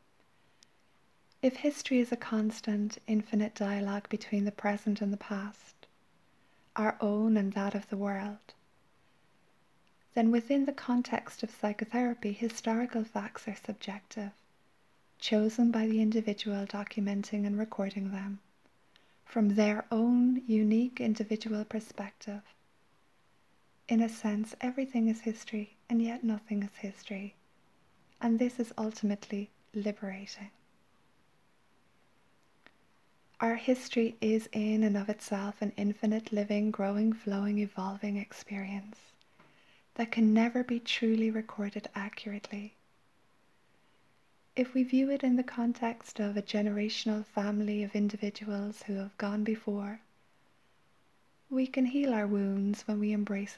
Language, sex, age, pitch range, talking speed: English, female, 20-39, 205-230 Hz, 120 wpm